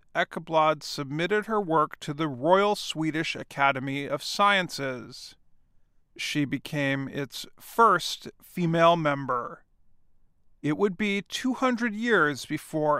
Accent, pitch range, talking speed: American, 140-185 Hz, 105 wpm